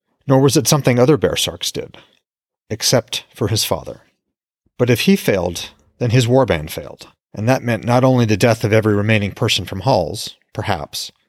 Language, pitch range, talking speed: English, 100-125 Hz, 175 wpm